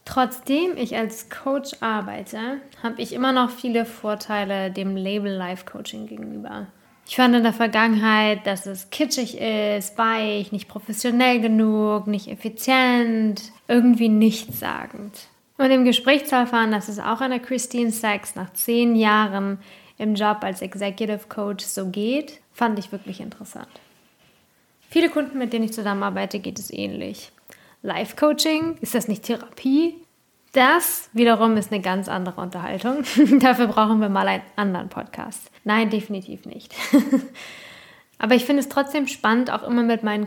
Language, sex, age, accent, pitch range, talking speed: English, female, 20-39, German, 200-245 Hz, 145 wpm